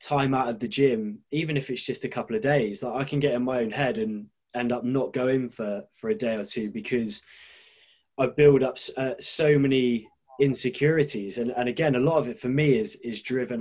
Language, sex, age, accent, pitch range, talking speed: English, male, 20-39, British, 120-145 Hz, 230 wpm